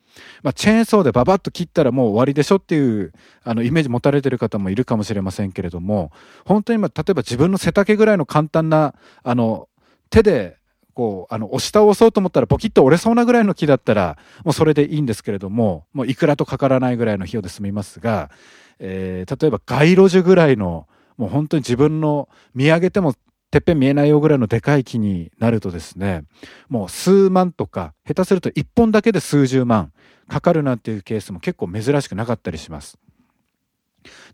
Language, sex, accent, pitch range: Japanese, male, native, 105-170 Hz